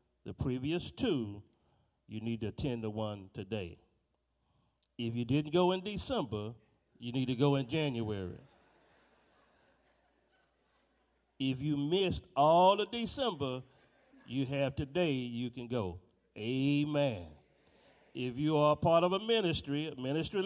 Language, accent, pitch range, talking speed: English, American, 115-165 Hz, 130 wpm